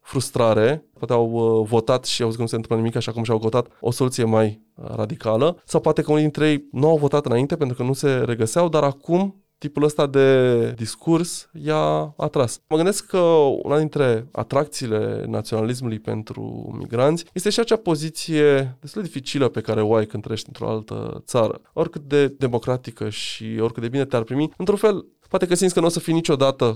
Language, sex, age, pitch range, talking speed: Romanian, male, 20-39, 115-155 Hz, 195 wpm